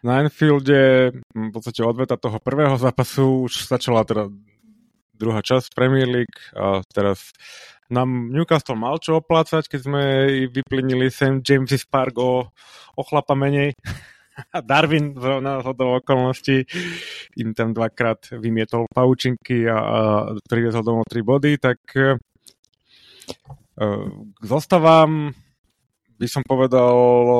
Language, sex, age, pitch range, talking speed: Slovak, male, 30-49, 105-135 Hz, 110 wpm